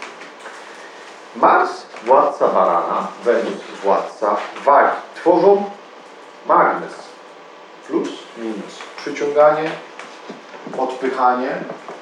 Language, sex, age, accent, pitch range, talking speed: Polish, male, 40-59, native, 135-195 Hz, 60 wpm